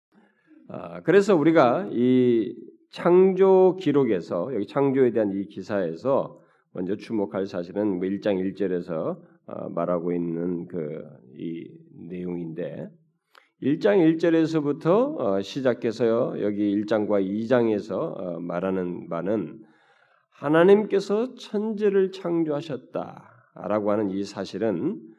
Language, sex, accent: Korean, male, native